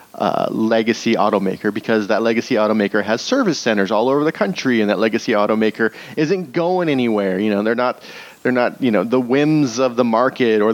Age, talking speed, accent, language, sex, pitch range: 30-49, 195 wpm, American, English, male, 110-140 Hz